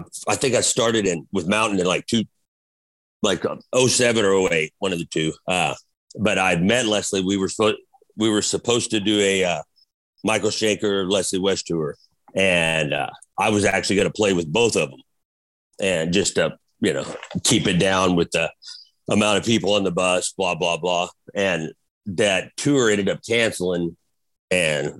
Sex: male